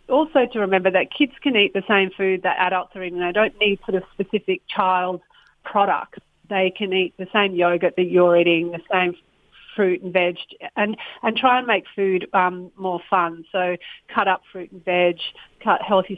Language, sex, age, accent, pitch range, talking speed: English, female, 40-59, Australian, 180-200 Hz, 195 wpm